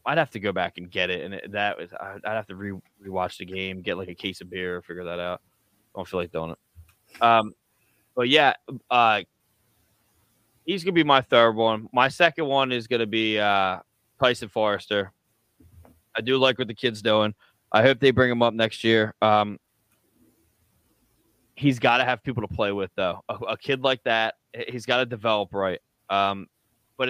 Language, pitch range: English, 100-125 Hz